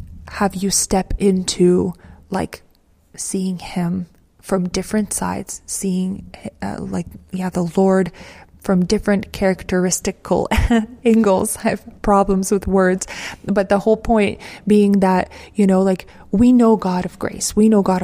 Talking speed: 140 wpm